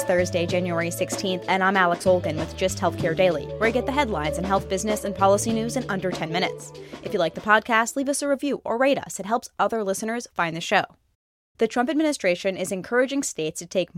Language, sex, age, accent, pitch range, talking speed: English, female, 20-39, American, 175-220 Hz, 230 wpm